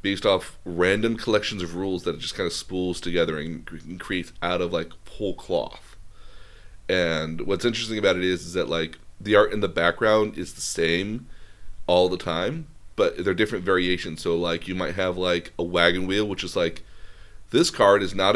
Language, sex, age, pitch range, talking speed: English, male, 30-49, 90-115 Hz, 195 wpm